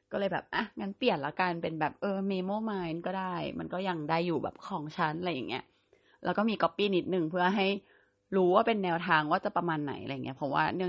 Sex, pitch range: female, 155-195 Hz